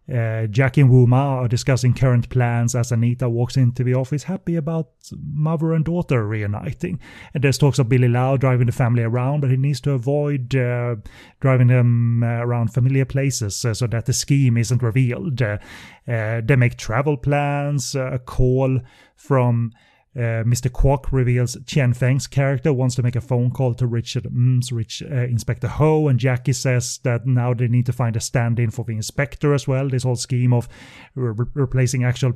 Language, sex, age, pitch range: English, male, 30-49, 120-135 Hz